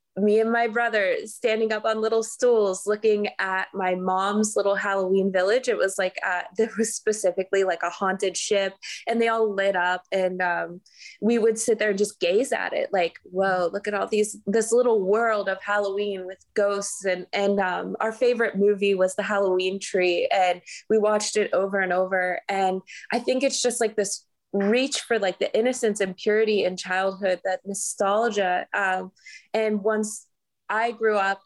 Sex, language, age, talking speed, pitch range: female, English, 20-39, 185 wpm, 190-220 Hz